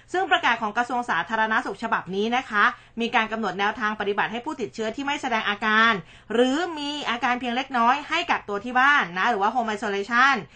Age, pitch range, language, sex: 20-39, 205-260 Hz, Thai, female